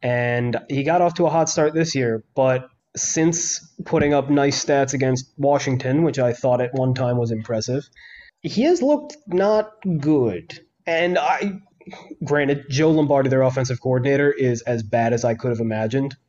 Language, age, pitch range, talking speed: English, 20-39, 115-135 Hz, 175 wpm